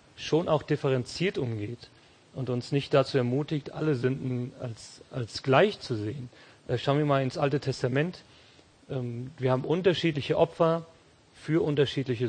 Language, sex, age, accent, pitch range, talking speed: English, male, 40-59, German, 125-145 Hz, 140 wpm